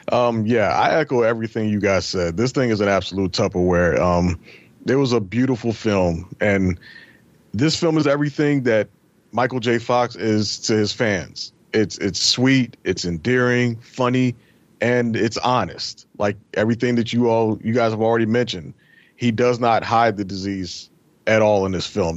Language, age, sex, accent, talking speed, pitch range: English, 30-49, male, American, 170 wpm, 105-125 Hz